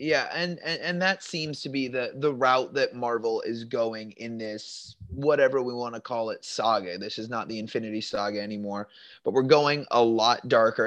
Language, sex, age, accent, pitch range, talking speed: English, male, 20-39, American, 115-155 Hz, 205 wpm